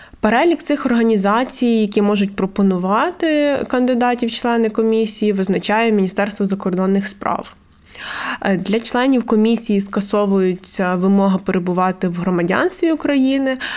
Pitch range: 185-220 Hz